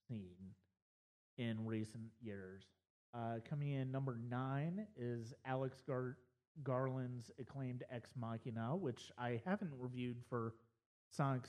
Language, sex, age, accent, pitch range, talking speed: English, male, 30-49, American, 115-130 Hz, 105 wpm